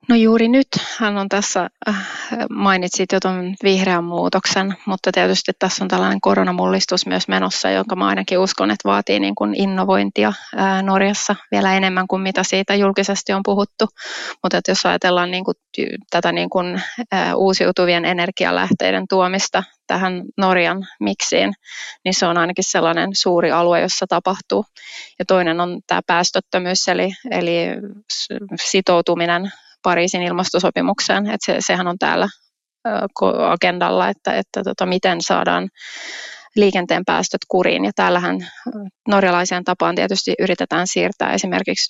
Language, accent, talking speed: Finnish, native, 135 wpm